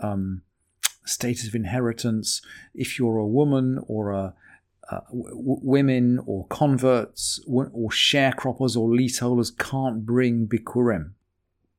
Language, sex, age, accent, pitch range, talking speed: English, male, 40-59, British, 115-140 Hz, 105 wpm